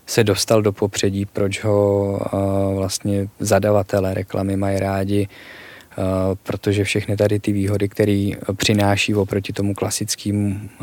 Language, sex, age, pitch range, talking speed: Czech, male, 20-39, 100-105 Hz, 125 wpm